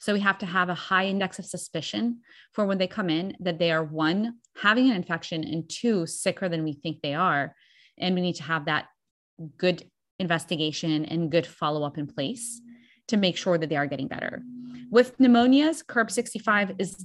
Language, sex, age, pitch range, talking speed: English, female, 20-39, 165-215 Hz, 195 wpm